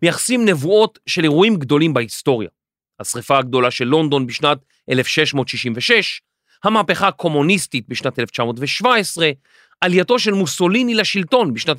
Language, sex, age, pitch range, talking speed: Hebrew, male, 40-59, 140-230 Hz, 105 wpm